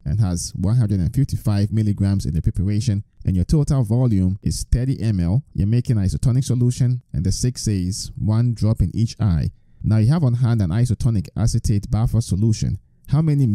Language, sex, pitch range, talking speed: English, male, 95-125 Hz, 175 wpm